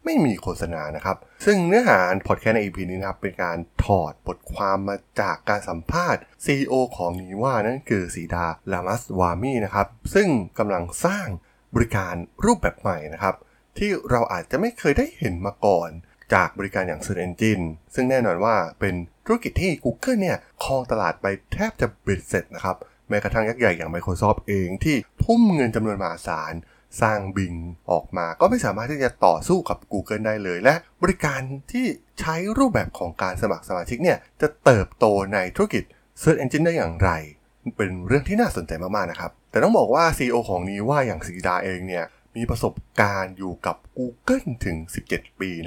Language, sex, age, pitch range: Thai, male, 20-39, 90-135 Hz